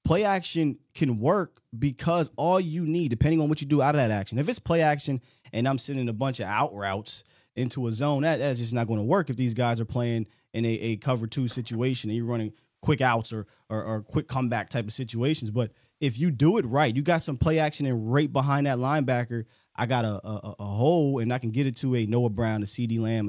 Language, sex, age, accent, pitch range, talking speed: English, male, 20-39, American, 115-145 Hz, 250 wpm